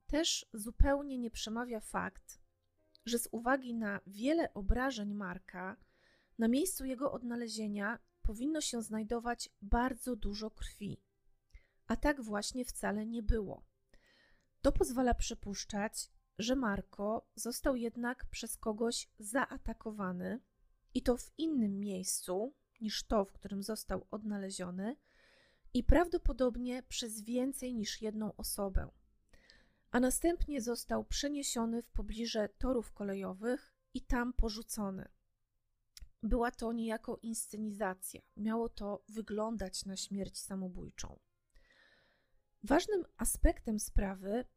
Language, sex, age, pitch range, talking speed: Polish, female, 30-49, 205-250 Hz, 110 wpm